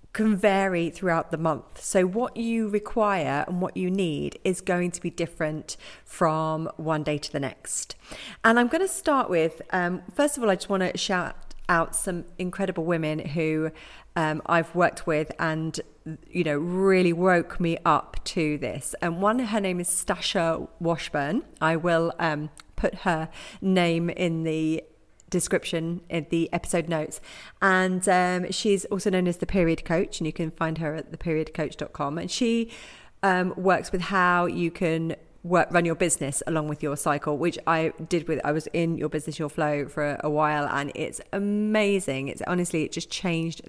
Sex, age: female, 40-59